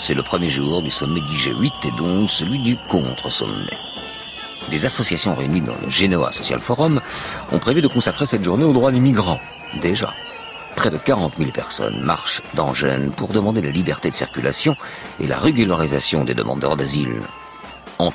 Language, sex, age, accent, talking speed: French, male, 50-69, French, 175 wpm